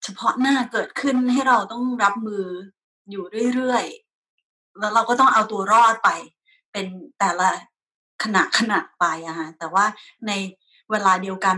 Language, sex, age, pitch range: Thai, female, 20-39, 190-240 Hz